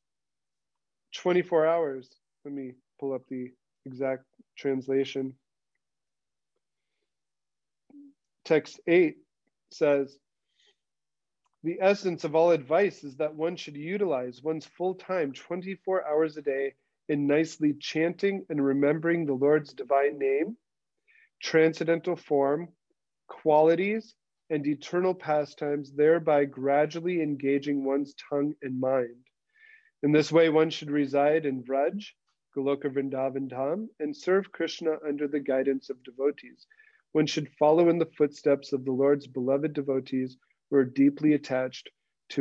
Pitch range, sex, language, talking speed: 135-165 Hz, male, English, 120 wpm